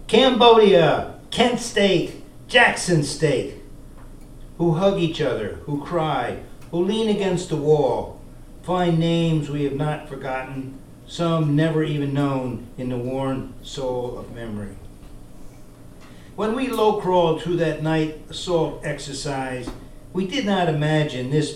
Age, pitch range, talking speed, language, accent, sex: 50-69, 130-165 Hz, 125 wpm, English, American, male